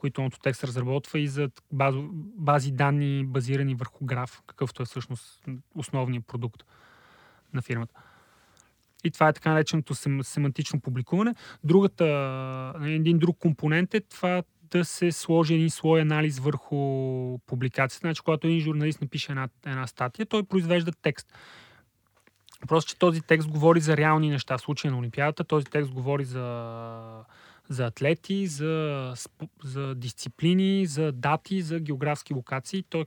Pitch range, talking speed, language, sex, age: 130-160 Hz, 145 wpm, Bulgarian, male, 30-49